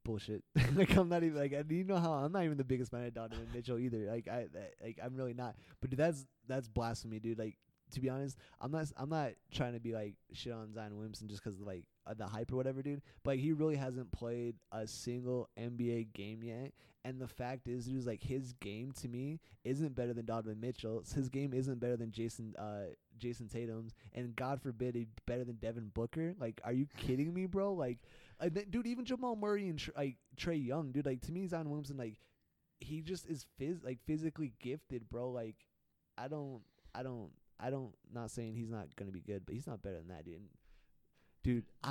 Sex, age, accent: male, 20-39, American